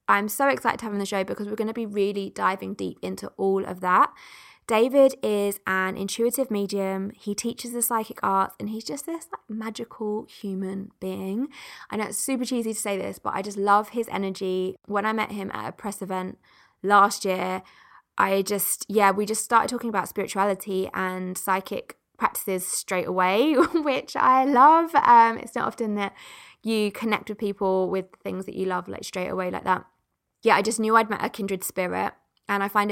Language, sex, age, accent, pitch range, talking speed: English, female, 20-39, British, 190-225 Hz, 200 wpm